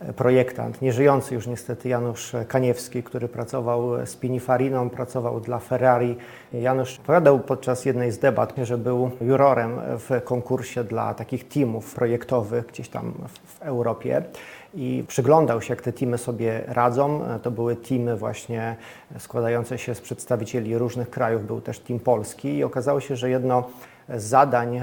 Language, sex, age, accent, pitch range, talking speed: Polish, male, 30-49, native, 120-135 Hz, 145 wpm